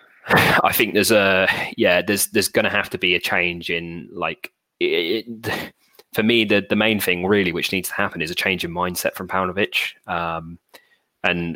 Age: 20-39